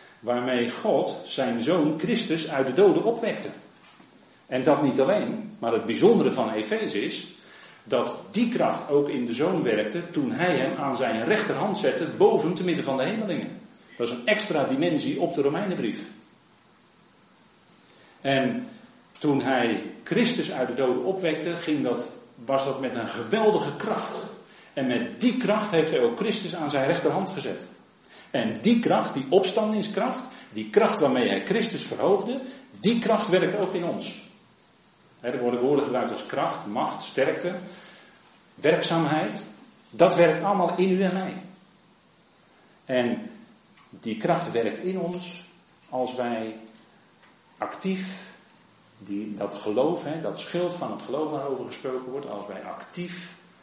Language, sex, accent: Dutch, male, Dutch